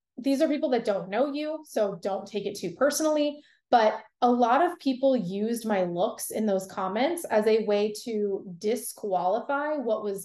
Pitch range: 195-240 Hz